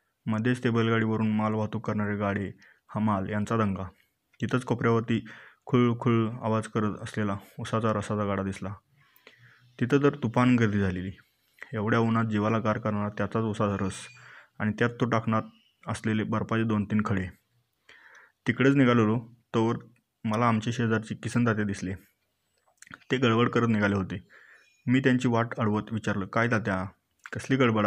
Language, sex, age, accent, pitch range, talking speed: Marathi, male, 20-39, native, 105-120 Hz, 140 wpm